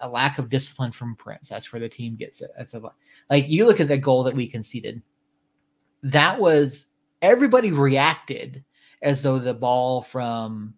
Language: English